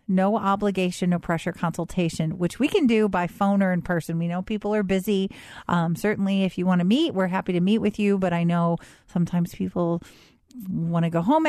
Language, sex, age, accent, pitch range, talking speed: English, female, 40-59, American, 175-210 Hz, 215 wpm